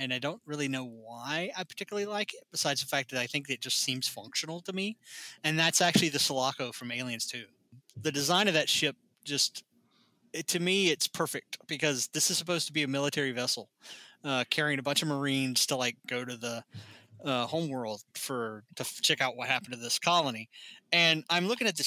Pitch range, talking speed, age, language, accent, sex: 125-160 Hz, 205 wpm, 20-39, English, American, male